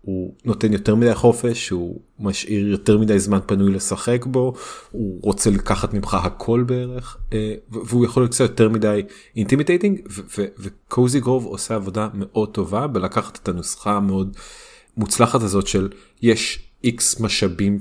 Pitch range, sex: 100-120 Hz, male